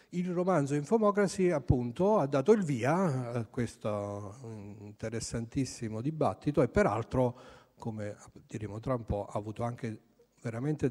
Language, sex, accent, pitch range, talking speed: Italian, male, native, 105-140 Hz, 125 wpm